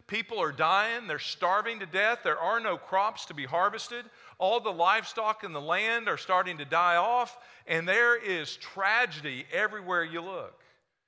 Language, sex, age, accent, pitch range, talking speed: English, male, 50-69, American, 175-225 Hz, 175 wpm